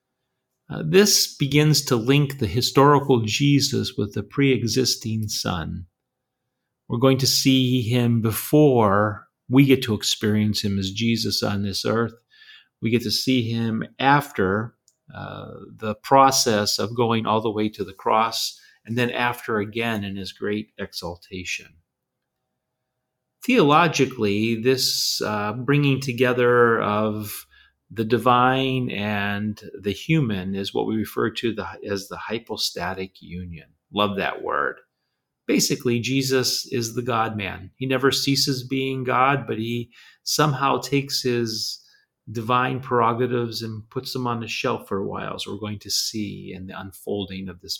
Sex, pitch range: male, 105-130 Hz